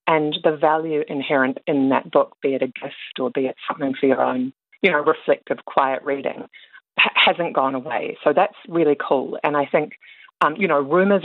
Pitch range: 135-170 Hz